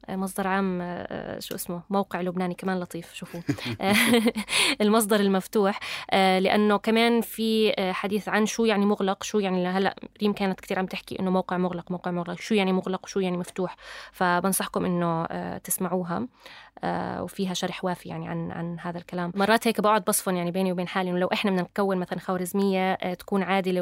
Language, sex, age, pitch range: Arabic, female, 20-39, 180-210 Hz